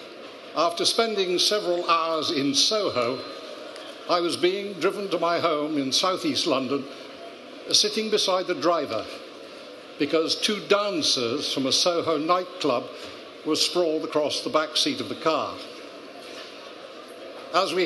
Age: 60-79